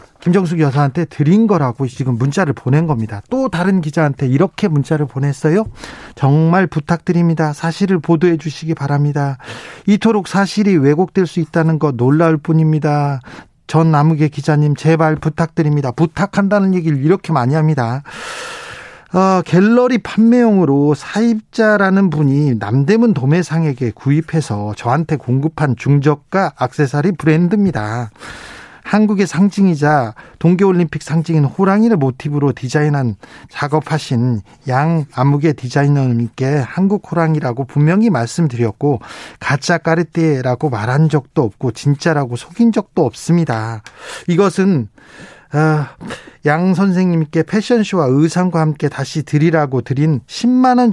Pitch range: 140-180 Hz